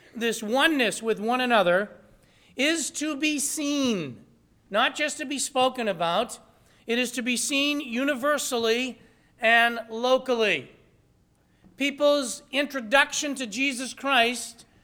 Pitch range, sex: 220-270 Hz, male